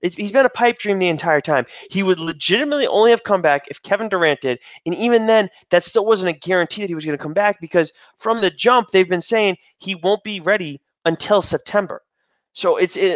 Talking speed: 230 wpm